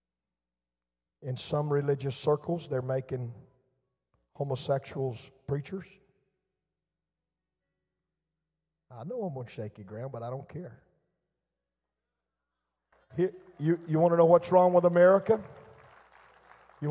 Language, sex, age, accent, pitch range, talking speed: English, male, 50-69, American, 140-185 Hz, 100 wpm